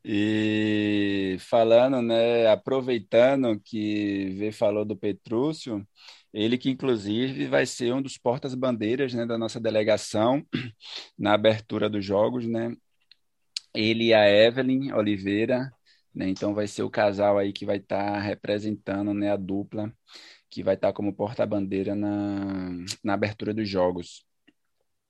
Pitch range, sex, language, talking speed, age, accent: 105-135 Hz, male, Portuguese, 140 wpm, 20-39, Brazilian